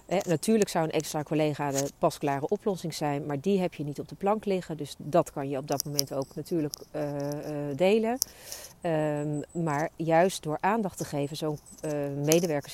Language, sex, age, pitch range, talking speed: Dutch, female, 40-59, 145-180 Hz, 175 wpm